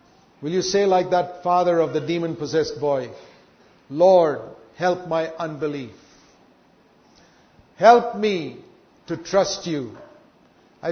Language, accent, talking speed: English, Indian, 110 wpm